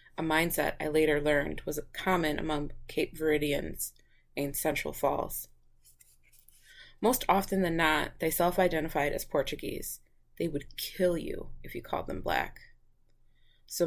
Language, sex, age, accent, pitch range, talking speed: English, female, 20-39, American, 145-180 Hz, 135 wpm